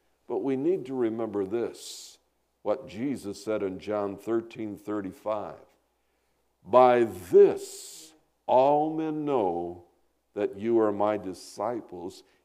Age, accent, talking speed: 60-79, American, 110 wpm